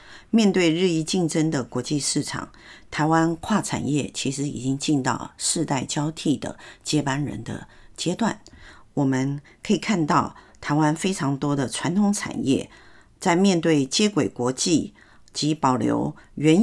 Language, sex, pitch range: Chinese, female, 135-175 Hz